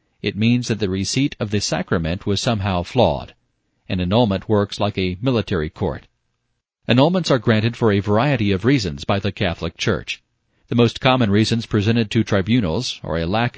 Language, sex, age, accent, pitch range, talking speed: English, male, 40-59, American, 100-125 Hz, 175 wpm